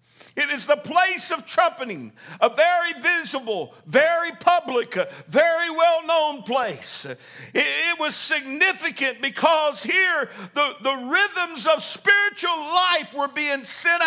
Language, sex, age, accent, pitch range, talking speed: English, male, 50-69, American, 255-320 Hz, 120 wpm